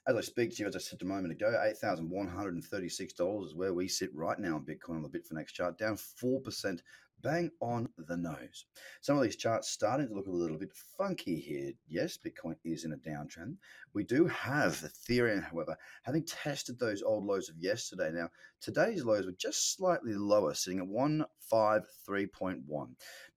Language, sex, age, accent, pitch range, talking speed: English, male, 30-49, Australian, 90-120 Hz, 185 wpm